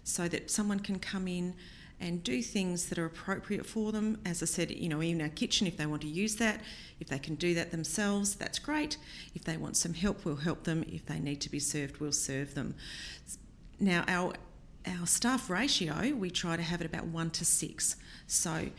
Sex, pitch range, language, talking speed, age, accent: female, 155-195 Hz, English, 215 wpm, 40-59, Australian